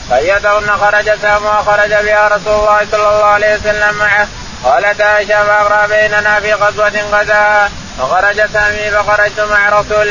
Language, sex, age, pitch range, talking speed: Arabic, male, 20-39, 205-210 Hz, 135 wpm